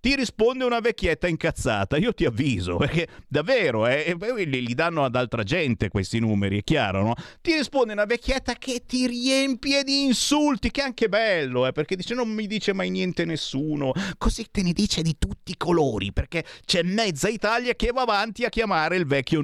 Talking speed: 195 wpm